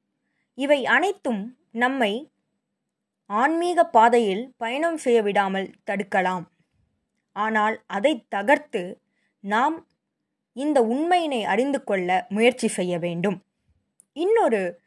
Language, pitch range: Tamil, 200-275 Hz